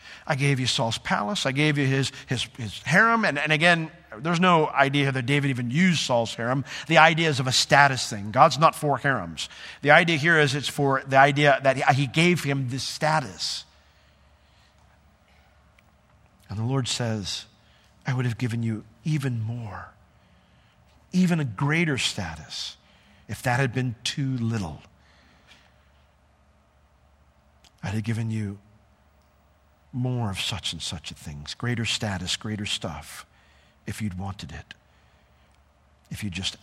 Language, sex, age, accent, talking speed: English, male, 50-69, American, 150 wpm